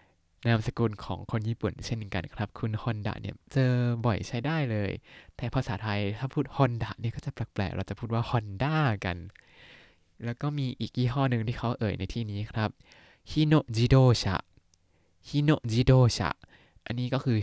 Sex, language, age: male, Thai, 20-39